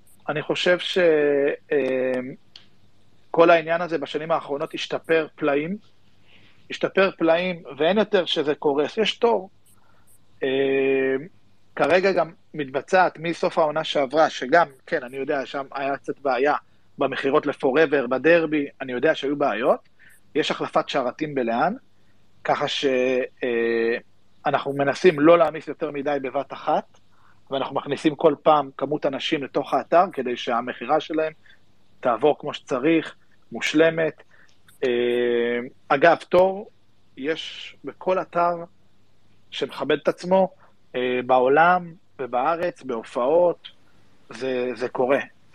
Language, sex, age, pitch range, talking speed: Hebrew, male, 30-49, 120-165 Hz, 110 wpm